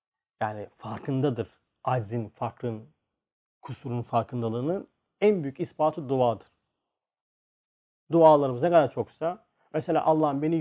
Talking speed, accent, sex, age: 95 wpm, native, male, 40-59